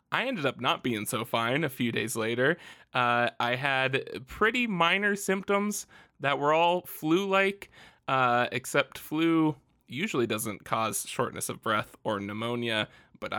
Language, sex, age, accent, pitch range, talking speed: English, male, 20-39, American, 120-145 Hz, 150 wpm